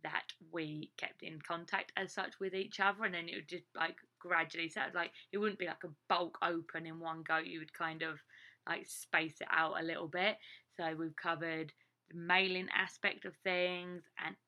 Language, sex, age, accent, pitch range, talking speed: English, female, 20-39, British, 160-180 Hz, 205 wpm